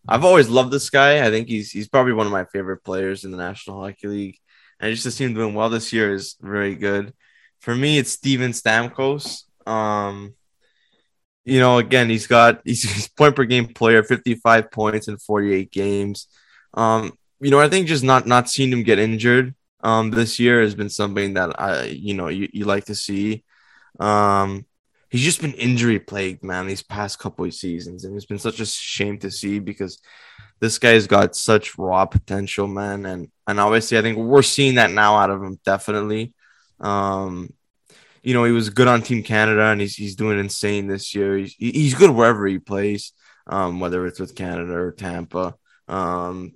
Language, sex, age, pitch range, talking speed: English, male, 10-29, 100-120 Hz, 200 wpm